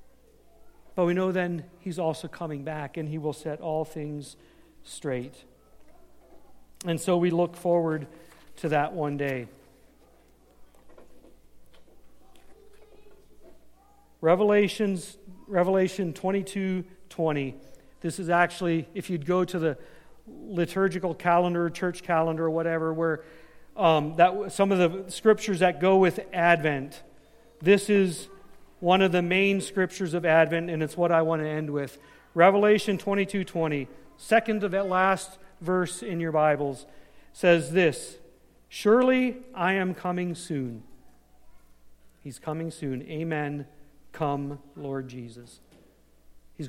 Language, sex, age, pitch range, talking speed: English, male, 50-69, 150-185 Hz, 120 wpm